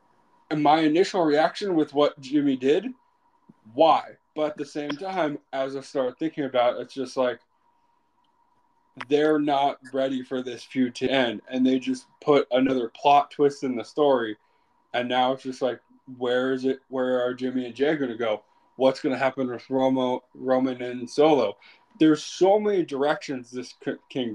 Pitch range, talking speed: 130-165 Hz, 175 wpm